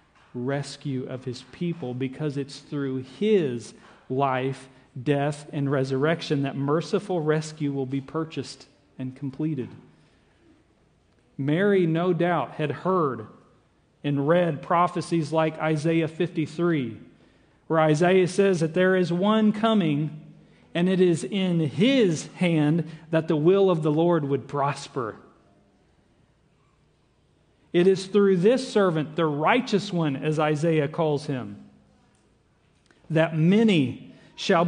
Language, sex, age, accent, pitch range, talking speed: English, male, 40-59, American, 135-175 Hz, 120 wpm